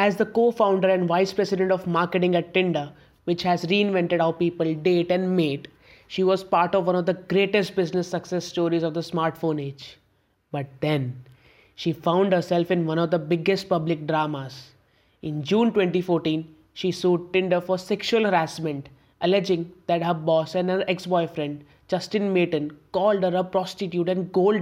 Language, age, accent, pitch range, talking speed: English, 20-39, Indian, 155-195 Hz, 170 wpm